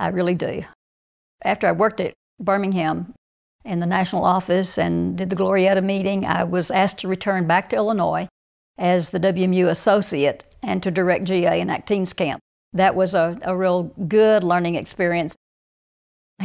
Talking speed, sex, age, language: 165 wpm, female, 60-79, English